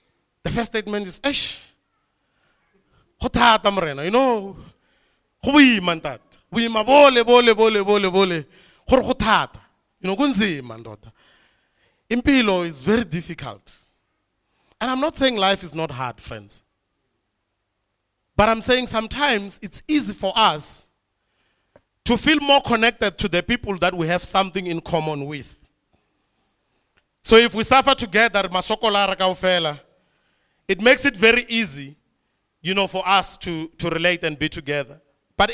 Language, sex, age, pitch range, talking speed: English, male, 30-49, 145-225 Hz, 105 wpm